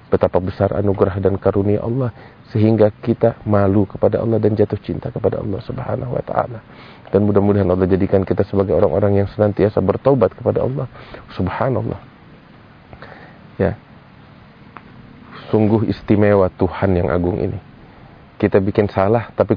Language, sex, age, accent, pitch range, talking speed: Indonesian, male, 30-49, native, 95-120 Hz, 130 wpm